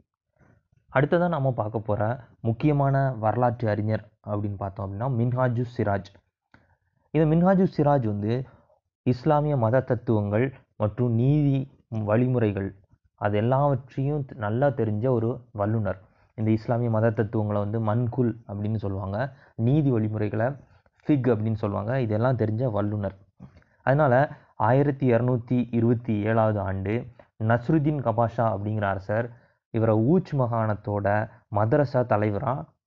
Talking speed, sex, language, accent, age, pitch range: 100 wpm, male, Tamil, native, 20-39, 105-135 Hz